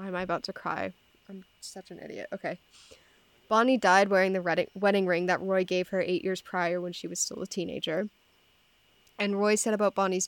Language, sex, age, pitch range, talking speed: English, female, 10-29, 180-205 Hz, 200 wpm